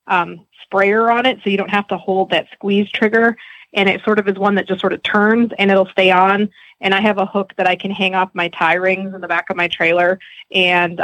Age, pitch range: 20-39, 180-200 Hz